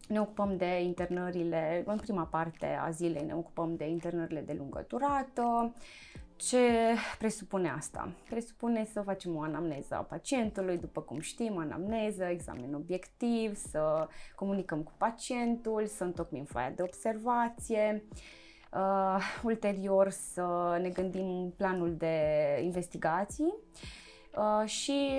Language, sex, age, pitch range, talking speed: Romanian, female, 20-39, 170-225 Hz, 120 wpm